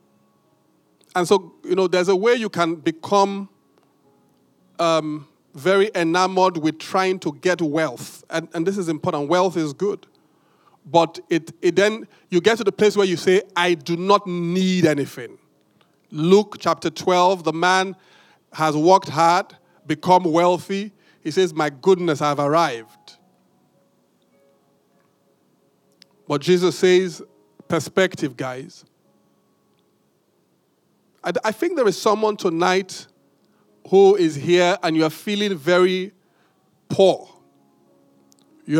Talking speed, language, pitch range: 125 wpm, English, 155-190 Hz